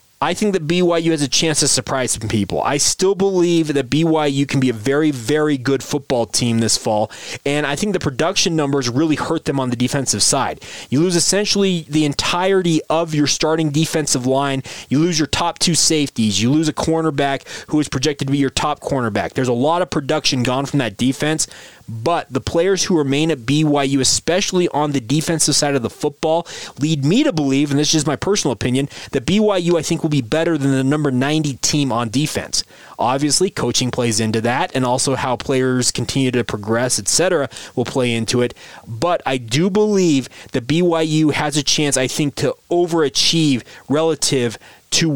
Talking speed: 195 wpm